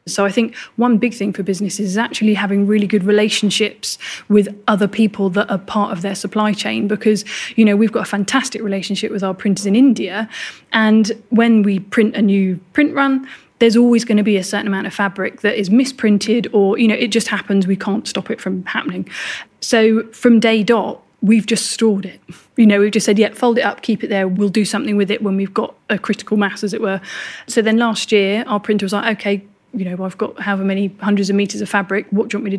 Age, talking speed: 20-39, 240 wpm